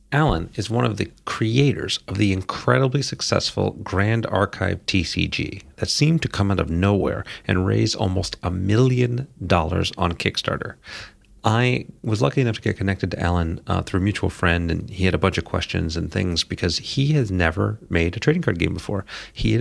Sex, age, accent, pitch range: male, 40-59, American, 90-115 Hz